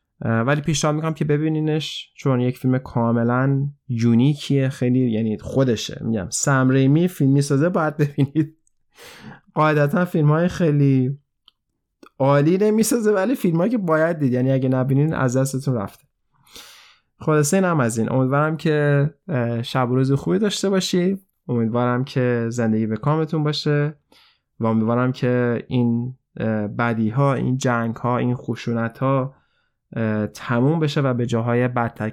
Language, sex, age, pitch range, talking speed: Persian, male, 20-39, 120-155 Hz, 140 wpm